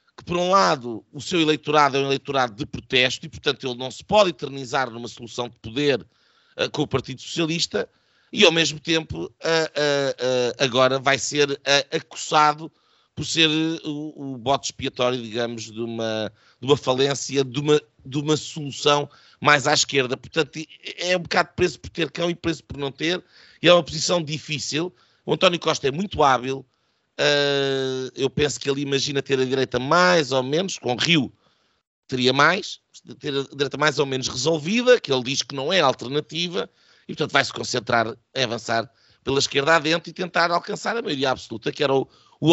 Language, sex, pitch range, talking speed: Portuguese, male, 130-165 Hz, 175 wpm